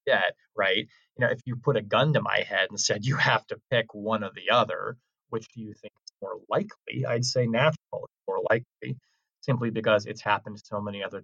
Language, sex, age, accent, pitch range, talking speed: English, male, 30-49, American, 110-150 Hz, 225 wpm